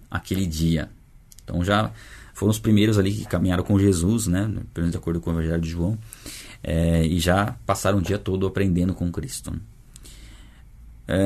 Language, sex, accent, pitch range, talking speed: Portuguese, male, Brazilian, 90-115 Hz, 160 wpm